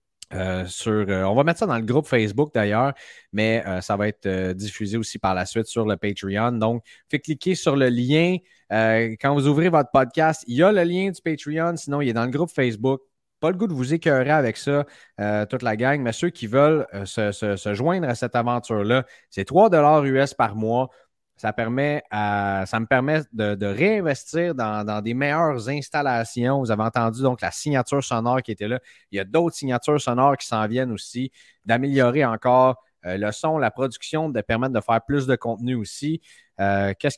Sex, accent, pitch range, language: male, Canadian, 110-145 Hz, French